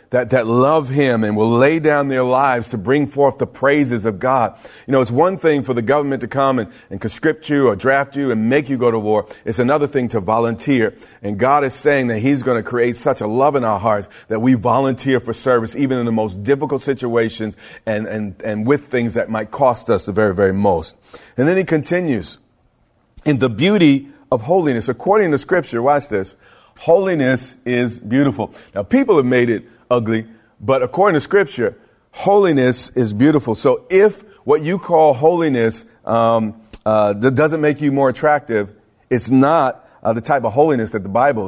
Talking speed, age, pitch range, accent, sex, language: 200 wpm, 40-59, 115-145 Hz, American, male, English